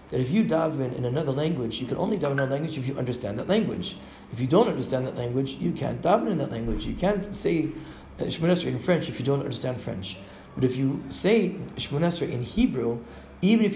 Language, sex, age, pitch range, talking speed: English, male, 40-59, 125-165 Hz, 225 wpm